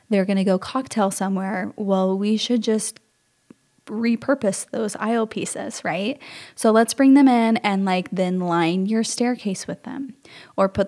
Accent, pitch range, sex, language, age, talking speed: American, 190-230 Hz, female, English, 10-29, 165 wpm